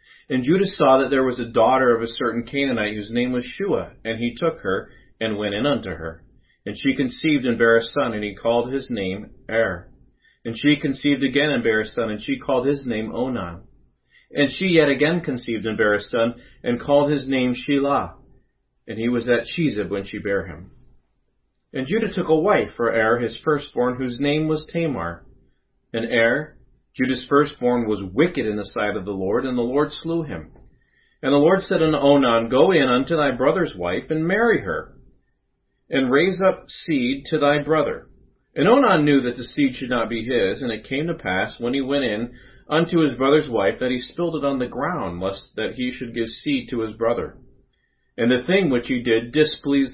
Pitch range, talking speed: 115-145 Hz, 210 wpm